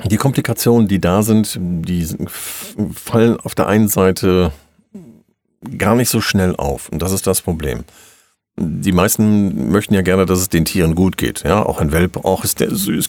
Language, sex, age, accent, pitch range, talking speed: German, male, 50-69, German, 80-100 Hz, 180 wpm